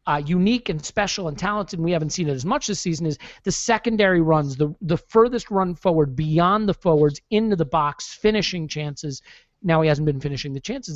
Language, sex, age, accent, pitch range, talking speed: English, male, 40-59, American, 150-195 Hz, 215 wpm